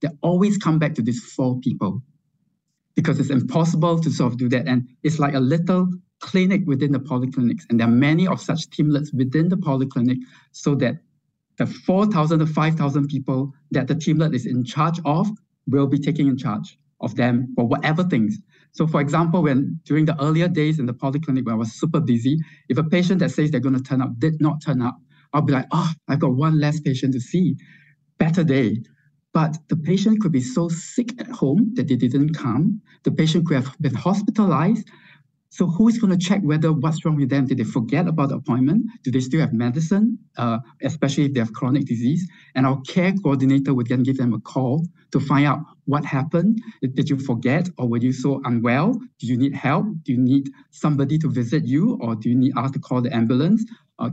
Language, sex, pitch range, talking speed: English, male, 130-165 Hz, 215 wpm